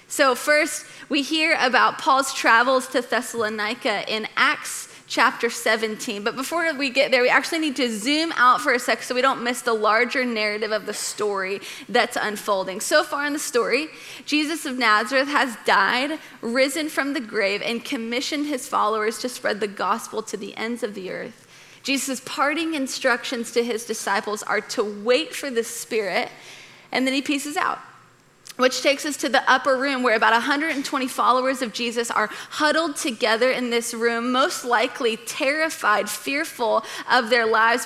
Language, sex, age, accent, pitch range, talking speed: English, female, 20-39, American, 225-280 Hz, 175 wpm